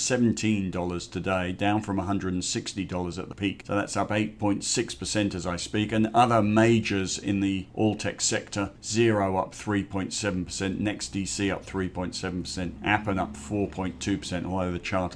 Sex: male